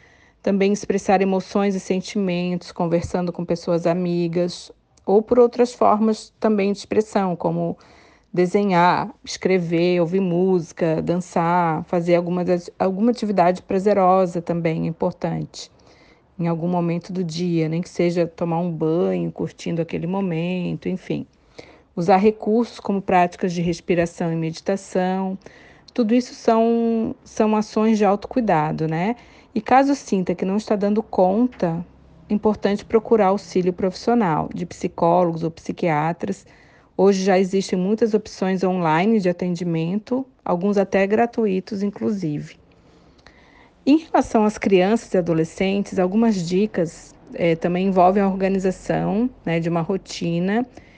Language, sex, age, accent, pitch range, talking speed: Portuguese, female, 40-59, Brazilian, 175-215 Hz, 125 wpm